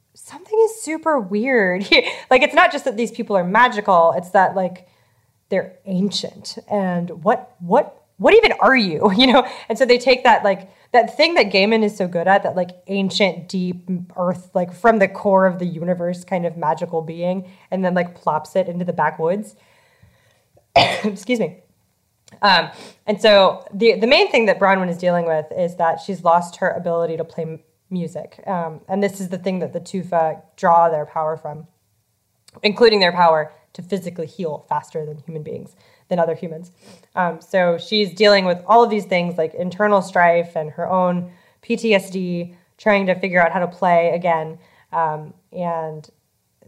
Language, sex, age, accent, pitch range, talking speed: English, female, 20-39, American, 170-210 Hz, 180 wpm